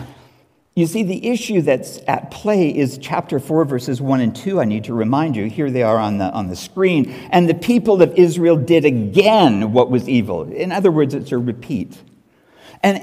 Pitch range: 120-170 Hz